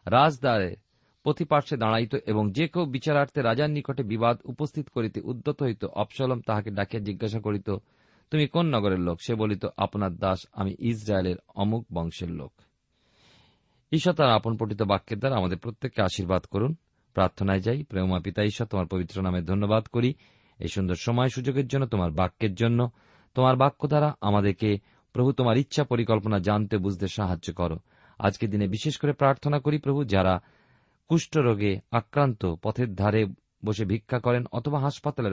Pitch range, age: 95-135 Hz, 40-59